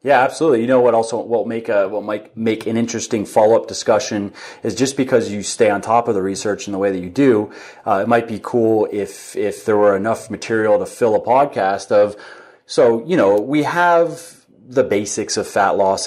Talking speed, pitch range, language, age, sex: 220 wpm, 100-120 Hz, English, 30-49, male